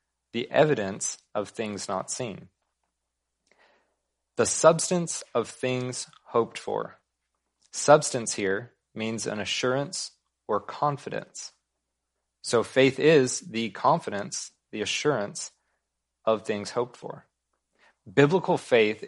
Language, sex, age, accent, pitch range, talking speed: English, male, 30-49, American, 100-130 Hz, 100 wpm